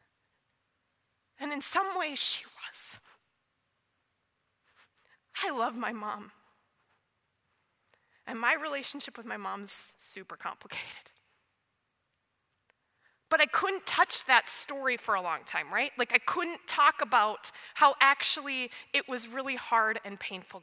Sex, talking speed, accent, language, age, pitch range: female, 120 wpm, American, English, 20-39, 240-360 Hz